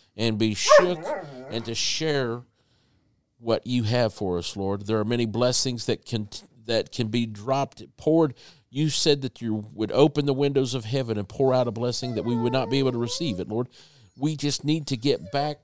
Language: English